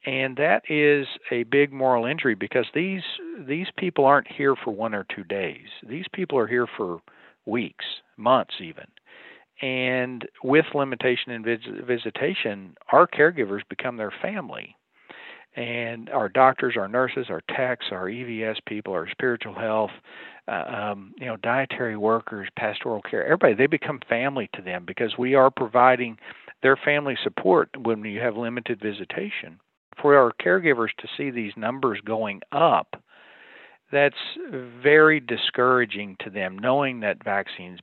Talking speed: 145 wpm